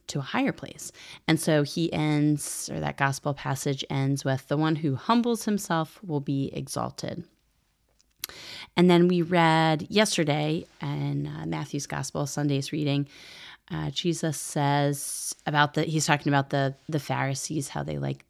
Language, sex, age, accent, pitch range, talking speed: English, female, 30-49, American, 140-165 Hz, 155 wpm